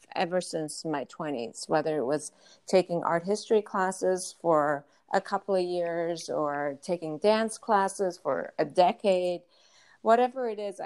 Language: English